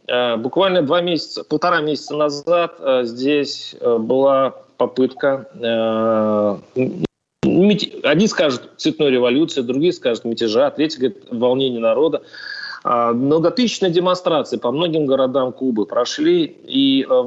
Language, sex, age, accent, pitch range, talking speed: Russian, male, 30-49, native, 120-185 Hz, 110 wpm